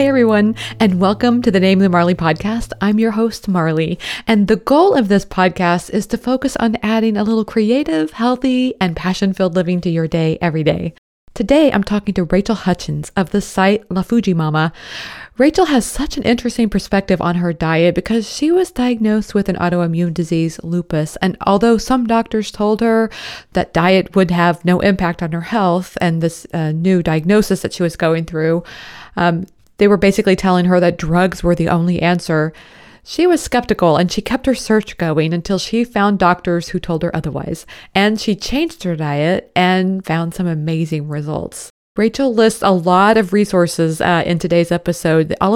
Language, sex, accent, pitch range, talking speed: English, female, American, 170-220 Hz, 190 wpm